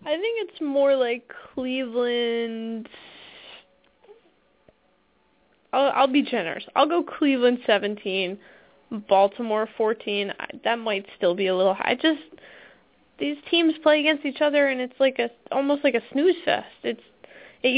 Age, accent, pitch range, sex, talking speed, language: 10-29, American, 215-270 Hz, female, 140 wpm, English